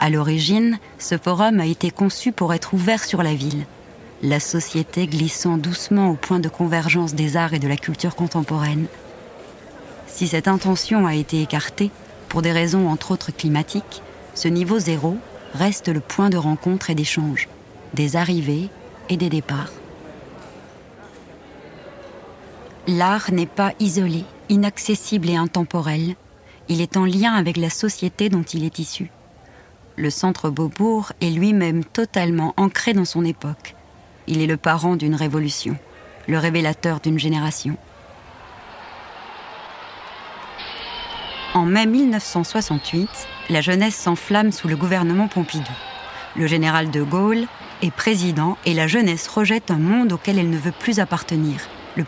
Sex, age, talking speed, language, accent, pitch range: female, 30-49, 140 wpm, French, French, 155-190 Hz